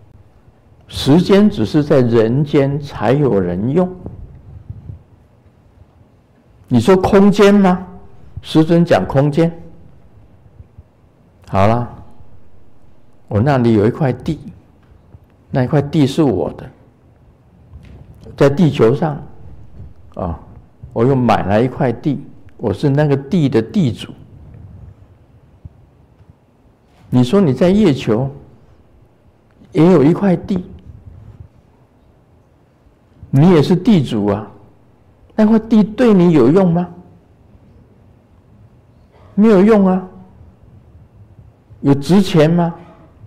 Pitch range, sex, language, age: 105-165 Hz, male, Chinese, 60-79